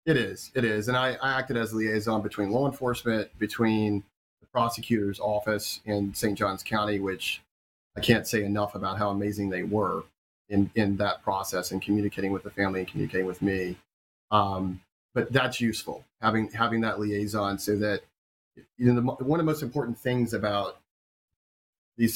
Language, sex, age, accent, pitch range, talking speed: English, male, 30-49, American, 100-115 Hz, 180 wpm